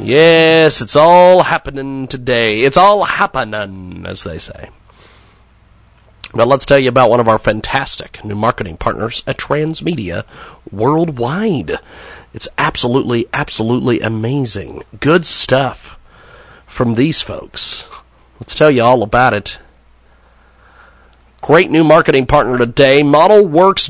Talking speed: 120 wpm